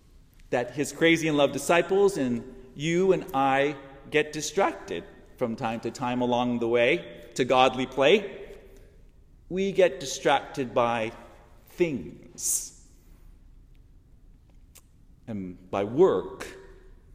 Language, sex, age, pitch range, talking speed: English, male, 40-59, 120-170 Hz, 105 wpm